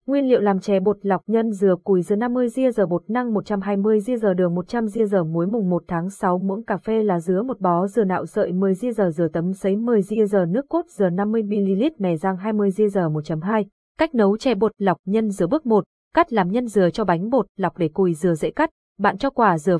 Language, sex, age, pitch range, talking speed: Vietnamese, female, 20-39, 180-230 Hz, 225 wpm